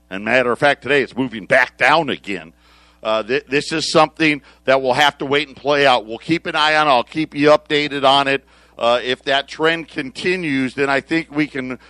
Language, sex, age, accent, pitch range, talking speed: English, male, 50-69, American, 130-155 Hz, 225 wpm